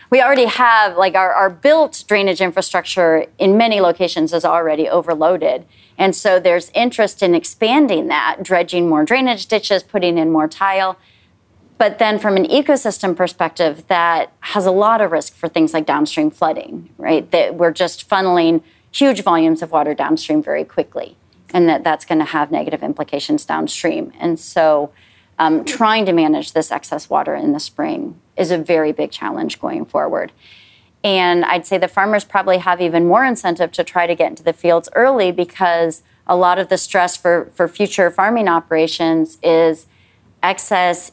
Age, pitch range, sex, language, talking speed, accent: 30-49, 165-205 Hz, female, English, 170 wpm, American